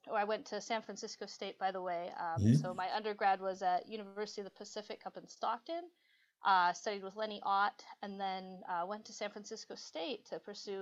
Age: 30-49